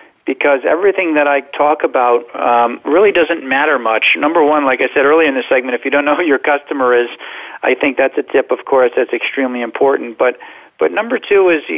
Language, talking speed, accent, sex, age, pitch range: English, 220 wpm, American, male, 50-69, 125-150 Hz